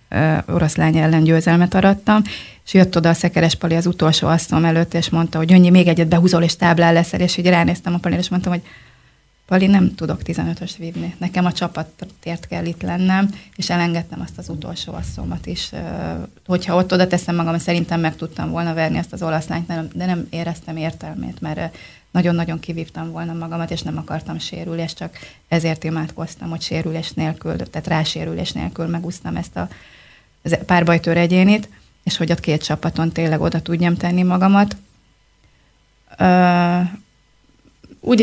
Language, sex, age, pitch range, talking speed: Hungarian, female, 20-39, 160-180 Hz, 165 wpm